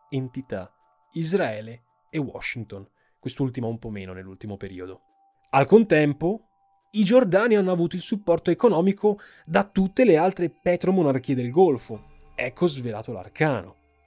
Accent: native